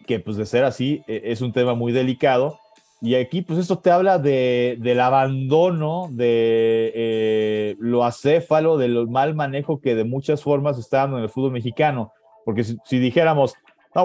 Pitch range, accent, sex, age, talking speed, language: 110-150 Hz, Mexican, male, 30-49, 175 wpm, Spanish